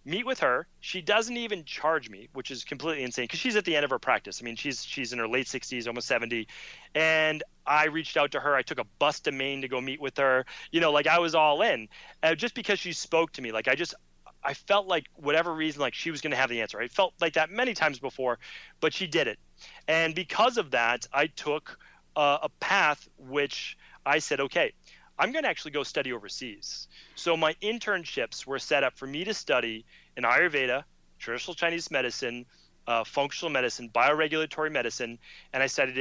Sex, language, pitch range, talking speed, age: male, English, 130-170 Hz, 220 wpm, 30-49